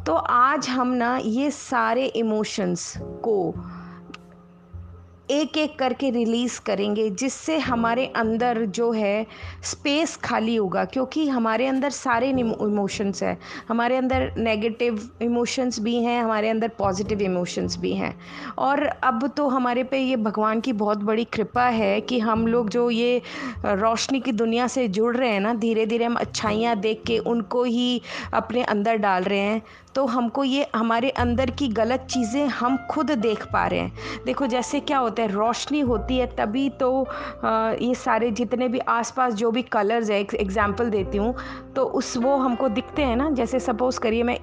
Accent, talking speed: native, 165 wpm